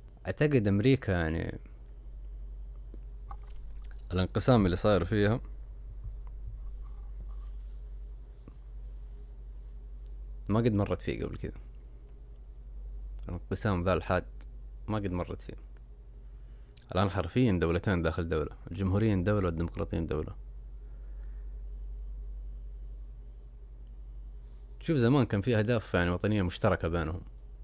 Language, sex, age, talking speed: Arabic, male, 30-49, 80 wpm